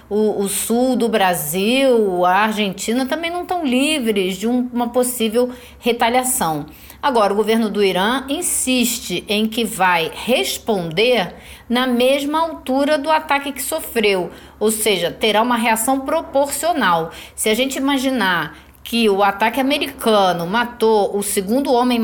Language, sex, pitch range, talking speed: Portuguese, female, 190-255 Hz, 135 wpm